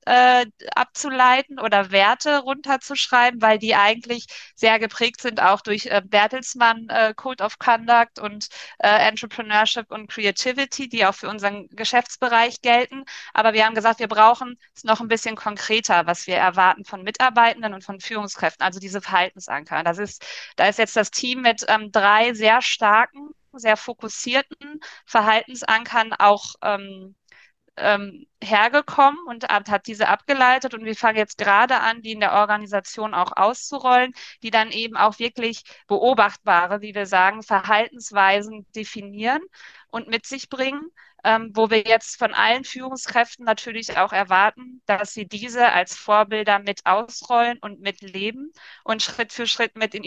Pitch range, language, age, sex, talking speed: 205-245 Hz, German, 20-39, female, 145 wpm